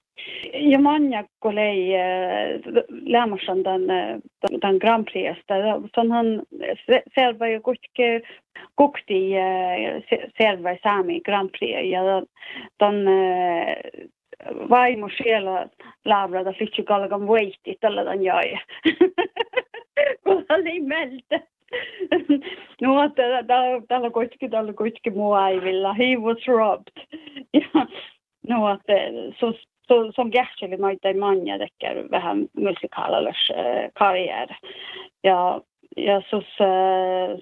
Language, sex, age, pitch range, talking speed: Croatian, female, 30-49, 195-265 Hz, 85 wpm